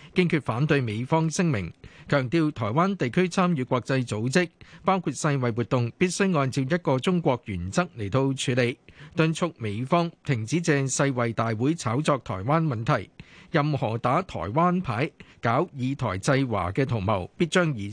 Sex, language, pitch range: male, Chinese, 125-165 Hz